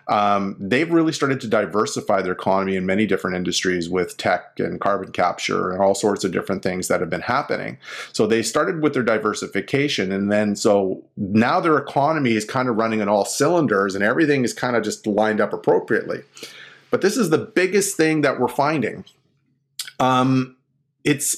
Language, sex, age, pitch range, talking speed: English, male, 30-49, 105-135 Hz, 185 wpm